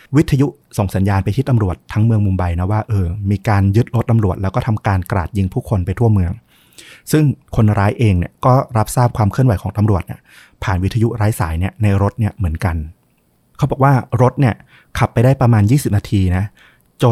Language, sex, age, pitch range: Thai, male, 20-39, 95-120 Hz